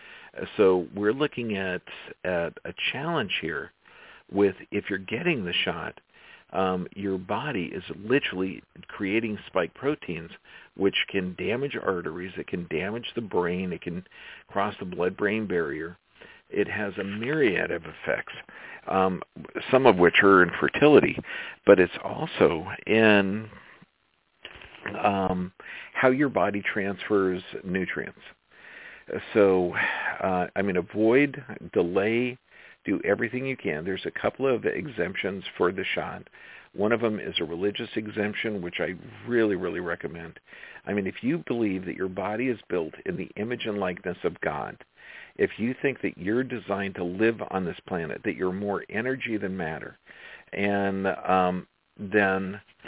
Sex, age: male, 50-69